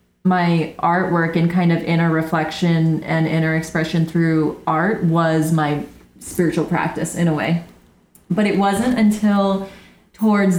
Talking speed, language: 135 wpm, English